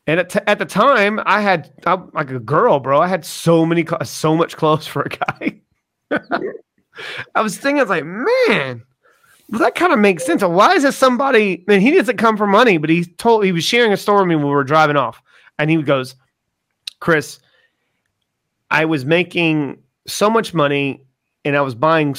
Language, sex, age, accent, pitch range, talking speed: English, male, 30-49, American, 140-175 Hz, 205 wpm